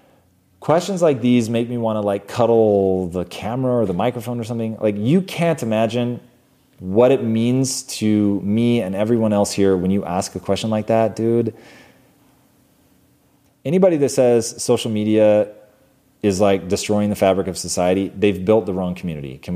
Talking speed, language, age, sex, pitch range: 170 wpm, English, 30-49, male, 100-125 Hz